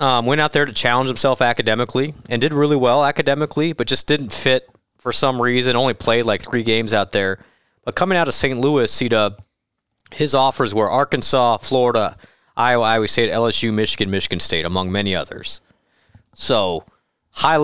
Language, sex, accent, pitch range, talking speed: English, male, American, 110-140 Hz, 175 wpm